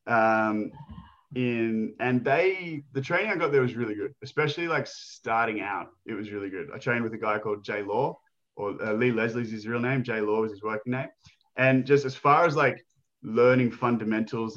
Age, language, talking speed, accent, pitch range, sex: 20-39, English, 200 wpm, Australian, 110-140 Hz, male